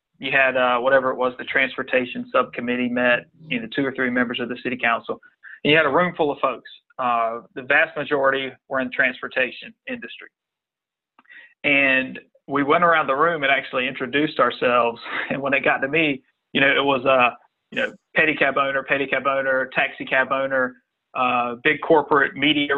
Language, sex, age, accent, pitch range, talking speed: English, male, 30-49, American, 125-140 Hz, 185 wpm